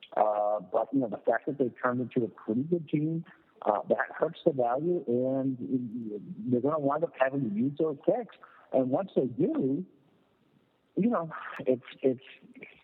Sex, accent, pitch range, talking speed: male, American, 110-130 Hz, 180 wpm